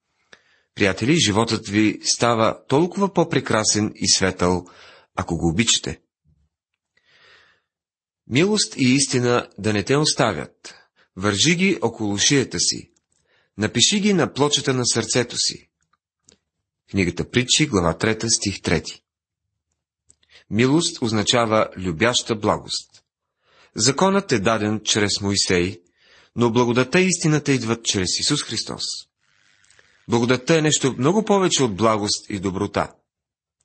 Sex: male